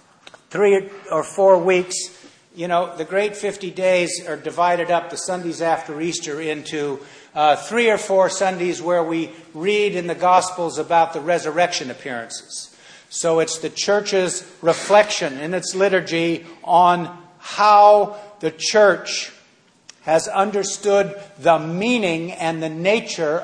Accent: American